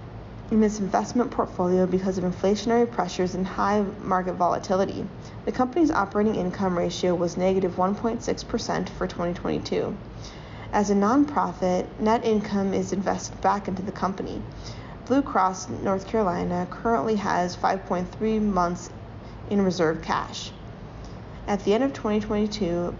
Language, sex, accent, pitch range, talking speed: English, female, American, 180-215 Hz, 130 wpm